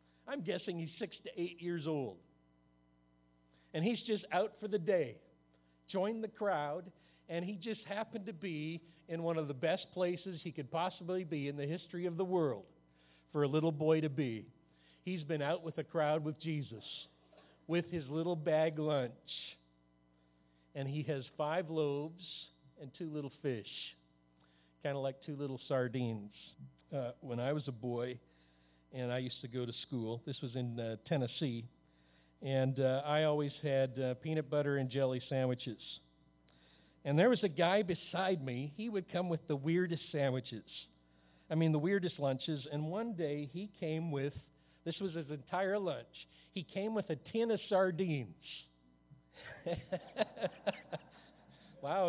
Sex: male